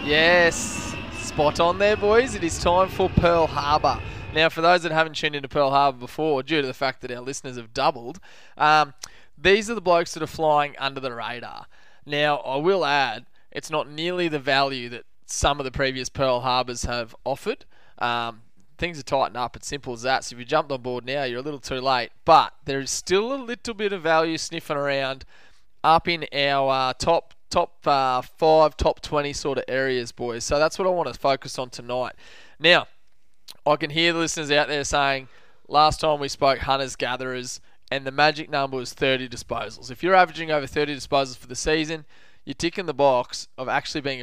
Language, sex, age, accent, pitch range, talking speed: English, male, 20-39, Australian, 125-160 Hz, 205 wpm